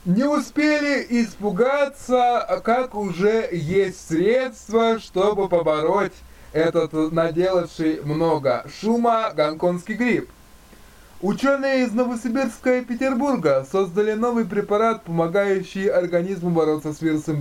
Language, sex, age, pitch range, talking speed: Russian, male, 20-39, 170-235 Hz, 95 wpm